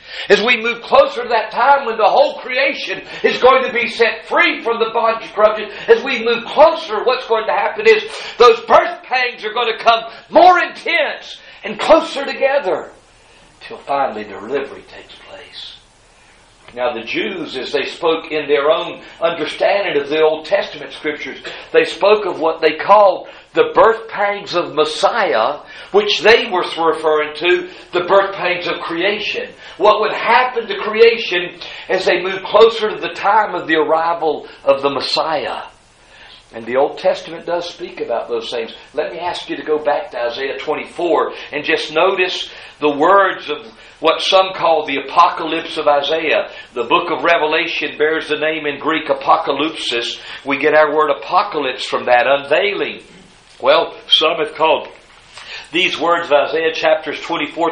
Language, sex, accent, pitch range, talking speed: English, male, American, 155-230 Hz, 170 wpm